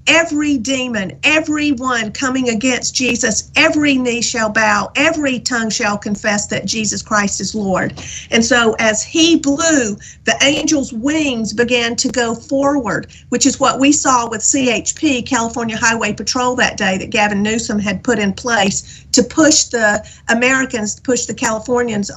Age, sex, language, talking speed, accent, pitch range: 50-69, female, English, 155 wpm, American, 220-265 Hz